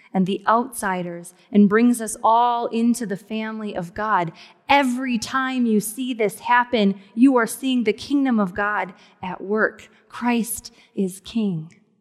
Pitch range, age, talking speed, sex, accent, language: 205-255 Hz, 20-39, 150 wpm, female, American, English